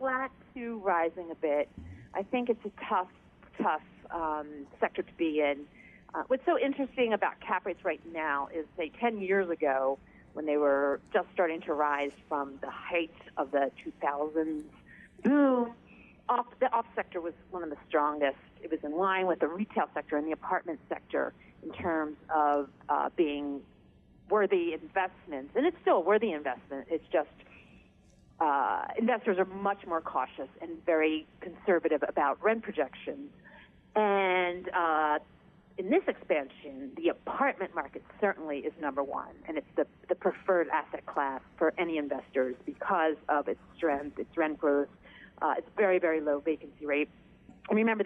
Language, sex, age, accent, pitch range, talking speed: English, female, 40-59, American, 150-205 Hz, 160 wpm